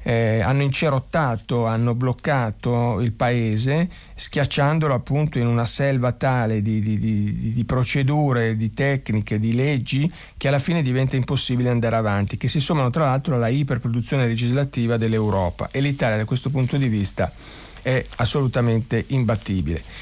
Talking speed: 140 wpm